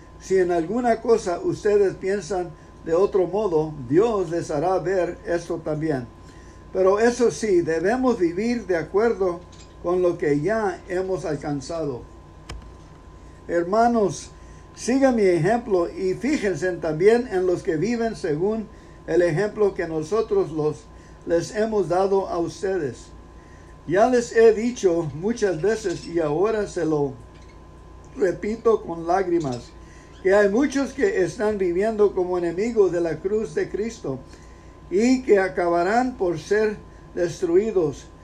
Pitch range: 160-215 Hz